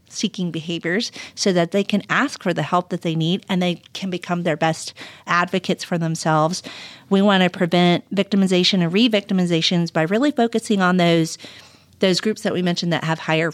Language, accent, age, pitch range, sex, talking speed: English, American, 40-59, 165-200 Hz, female, 185 wpm